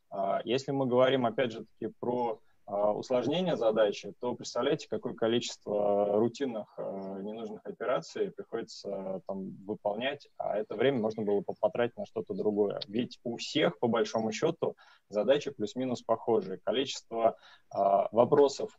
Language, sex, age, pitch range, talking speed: Russian, male, 20-39, 105-130 Hz, 135 wpm